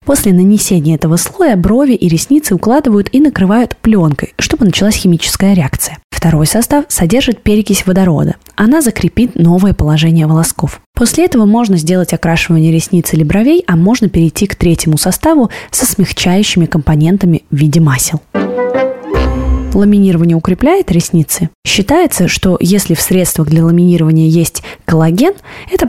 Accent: native